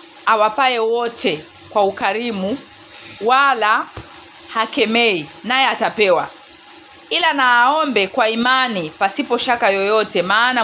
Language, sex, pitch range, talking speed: Swahili, female, 185-245 Hz, 95 wpm